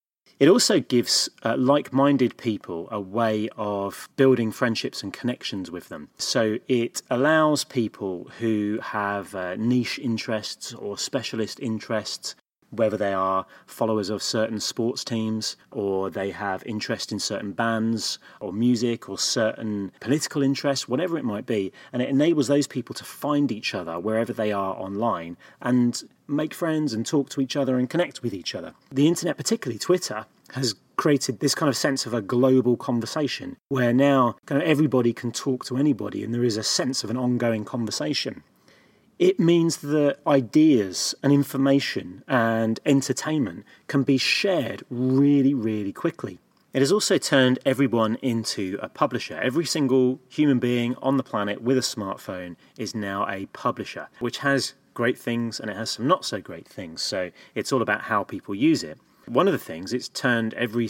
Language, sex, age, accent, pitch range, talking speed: English, male, 30-49, British, 110-140 Hz, 170 wpm